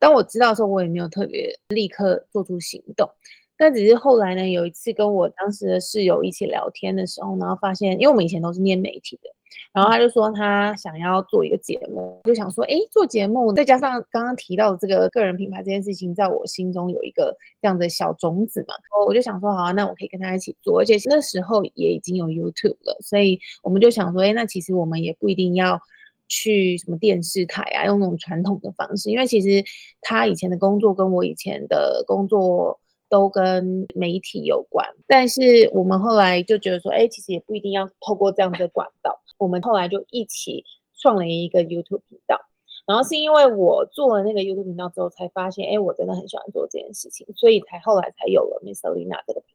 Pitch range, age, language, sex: 185-235 Hz, 20-39, Chinese, female